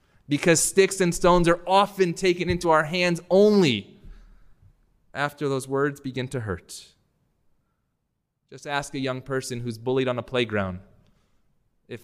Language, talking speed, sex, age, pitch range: English, 140 wpm, male, 20-39, 115-145 Hz